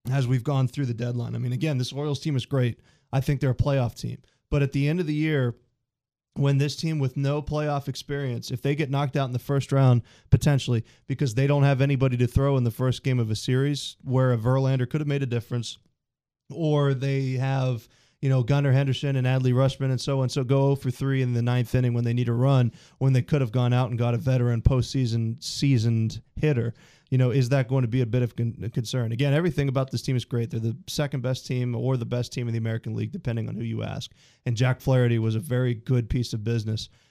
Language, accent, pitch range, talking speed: English, American, 120-135 Hz, 245 wpm